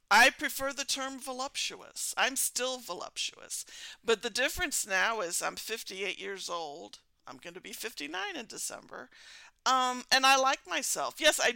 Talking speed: 155 wpm